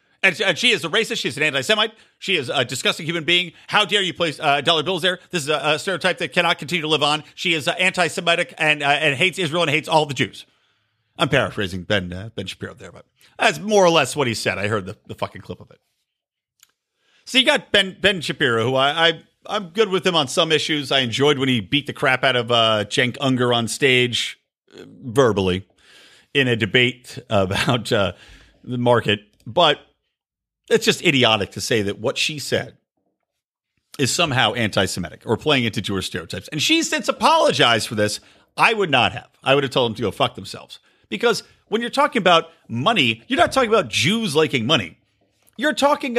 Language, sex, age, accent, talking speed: English, male, 50-69, American, 210 wpm